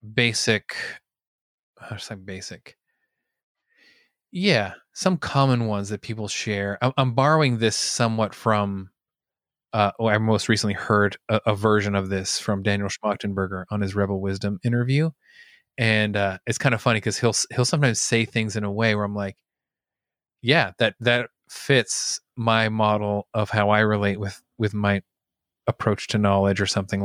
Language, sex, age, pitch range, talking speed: English, male, 20-39, 100-125 Hz, 155 wpm